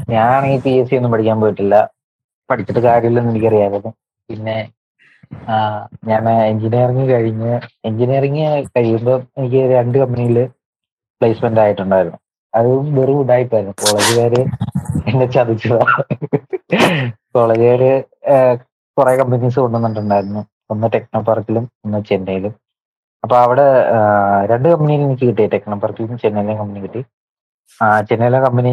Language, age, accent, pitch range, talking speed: Malayalam, 20-39, native, 105-130 Hz, 105 wpm